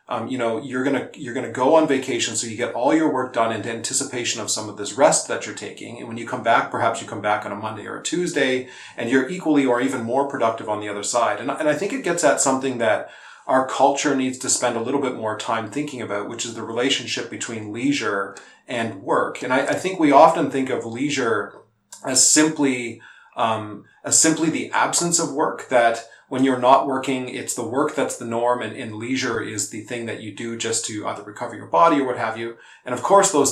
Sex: male